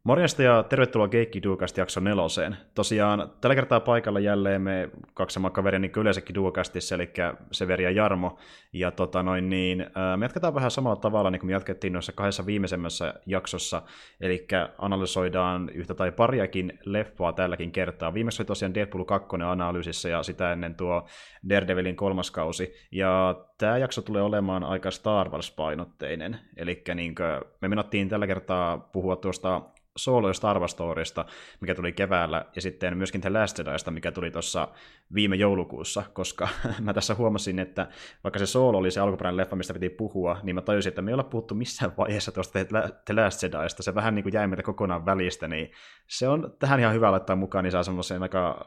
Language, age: Finnish, 20-39